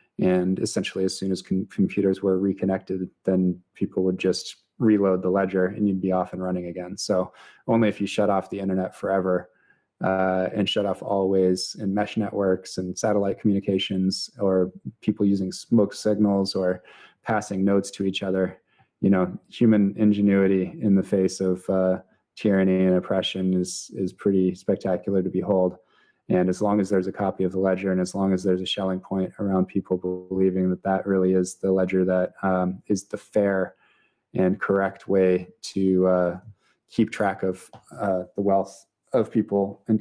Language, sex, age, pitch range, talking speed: English, male, 20-39, 95-100 Hz, 175 wpm